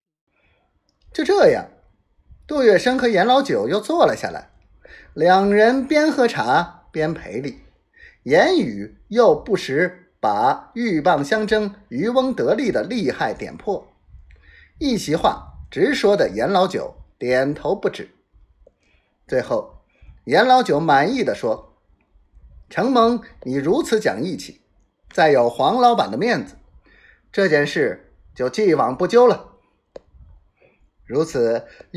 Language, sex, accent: Chinese, male, native